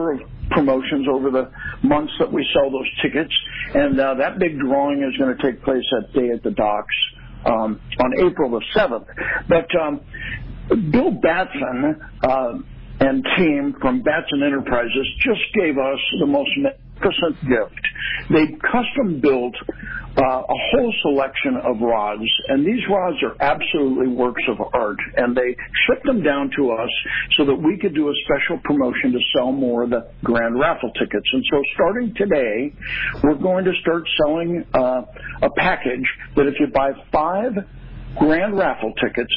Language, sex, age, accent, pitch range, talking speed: English, male, 60-79, American, 130-180 Hz, 165 wpm